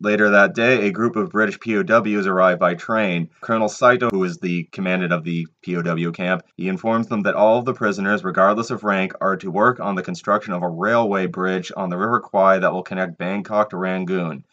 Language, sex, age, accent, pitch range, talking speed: English, male, 30-49, American, 90-110 Hz, 215 wpm